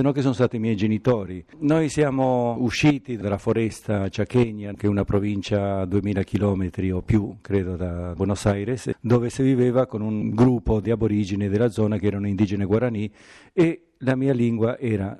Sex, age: male, 50-69